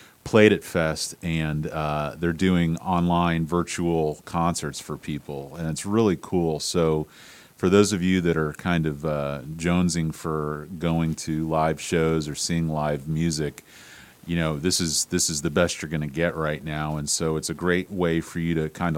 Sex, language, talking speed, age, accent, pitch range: male, English, 185 wpm, 40-59, American, 75-85 Hz